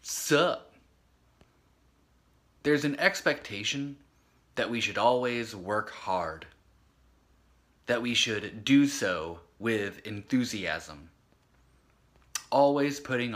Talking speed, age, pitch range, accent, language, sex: 85 wpm, 20-39, 80-130 Hz, American, English, male